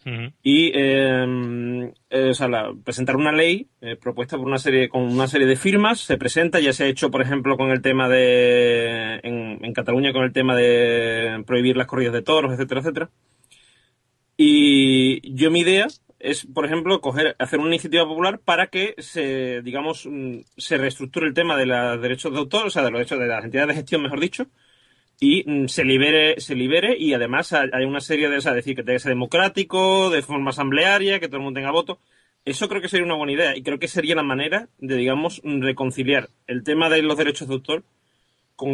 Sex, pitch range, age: male, 130-160 Hz, 30-49